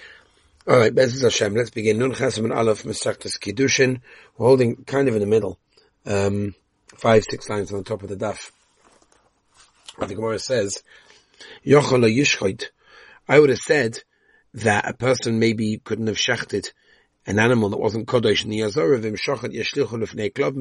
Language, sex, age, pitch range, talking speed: English, male, 30-49, 105-135 Hz, 125 wpm